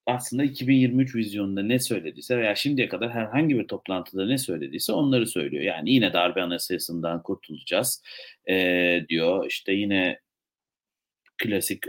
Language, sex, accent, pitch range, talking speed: Turkish, male, native, 90-125 Hz, 125 wpm